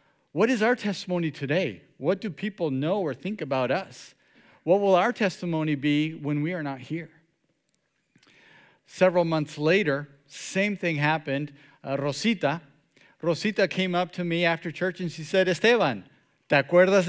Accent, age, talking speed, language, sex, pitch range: American, 40-59, 155 wpm, English, male, 135-180 Hz